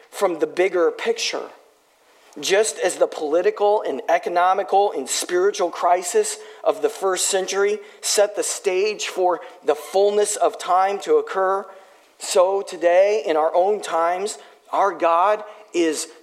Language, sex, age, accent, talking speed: English, male, 40-59, American, 135 wpm